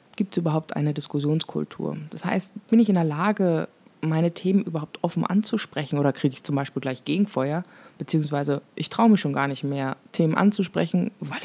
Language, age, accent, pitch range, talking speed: German, 20-39, German, 150-190 Hz, 185 wpm